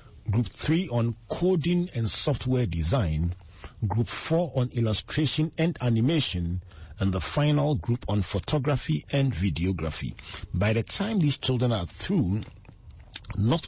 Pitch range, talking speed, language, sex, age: 100-135 Hz, 125 wpm, English, male, 40-59